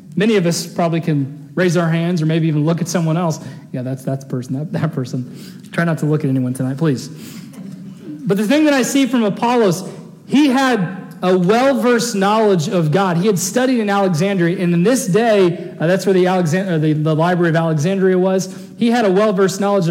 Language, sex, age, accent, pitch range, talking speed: English, male, 40-59, American, 165-210 Hz, 215 wpm